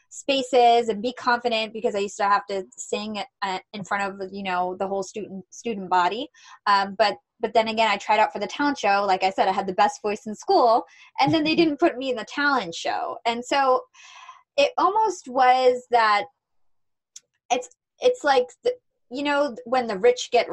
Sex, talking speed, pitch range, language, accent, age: female, 200 wpm, 200-260 Hz, English, American, 20-39